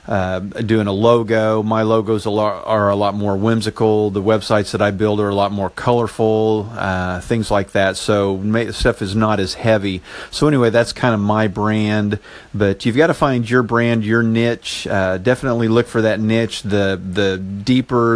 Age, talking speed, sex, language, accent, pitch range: 50-69, 185 wpm, male, English, American, 100-120 Hz